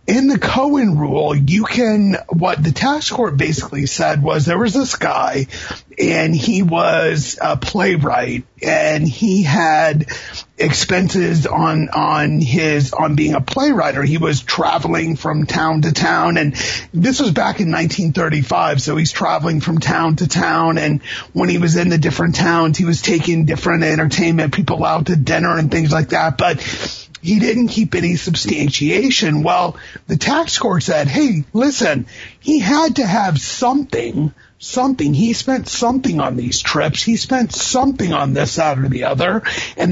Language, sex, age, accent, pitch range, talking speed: English, male, 30-49, American, 155-215 Hz, 165 wpm